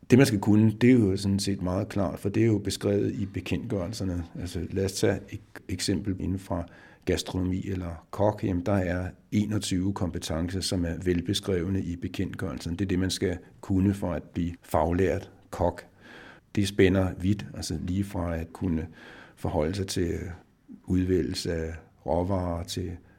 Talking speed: 165 wpm